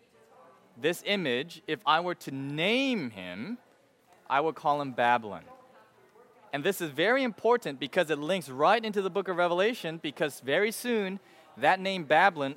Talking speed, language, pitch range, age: 160 wpm, English, 145-195 Hz, 20-39